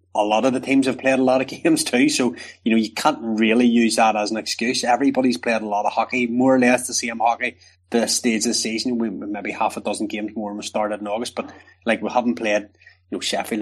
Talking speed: 265 wpm